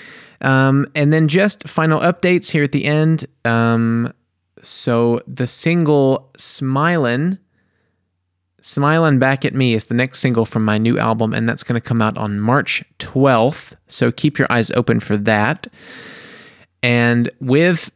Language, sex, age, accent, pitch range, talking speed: English, male, 20-39, American, 110-135 Hz, 150 wpm